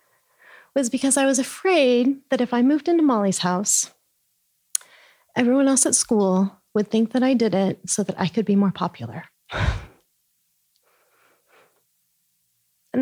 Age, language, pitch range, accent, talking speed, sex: 30-49, English, 190-275 Hz, American, 140 wpm, female